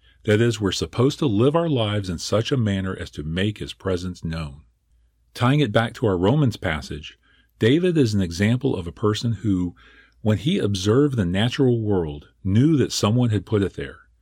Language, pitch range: English, 85-120 Hz